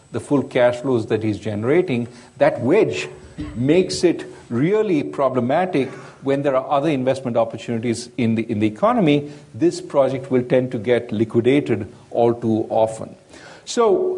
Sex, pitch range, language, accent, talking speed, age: male, 125-180 Hz, English, Indian, 150 wpm, 50-69